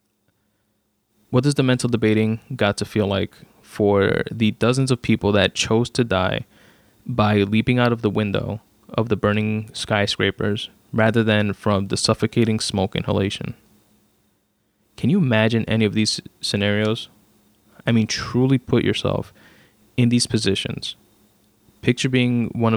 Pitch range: 105-120 Hz